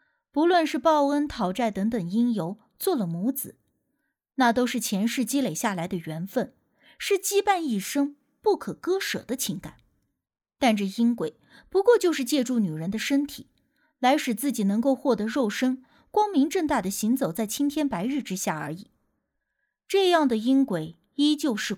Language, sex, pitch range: Chinese, female, 205-300 Hz